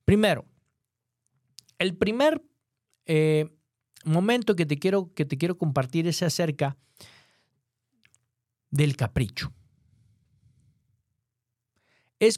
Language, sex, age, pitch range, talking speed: Spanish, male, 50-69, 130-180 Hz, 75 wpm